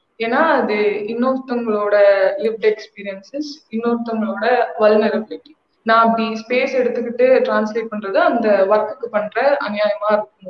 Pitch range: 215-265 Hz